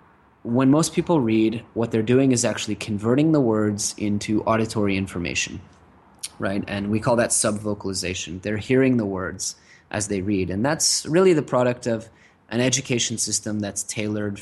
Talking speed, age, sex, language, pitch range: 160 wpm, 20-39, male, English, 100-120 Hz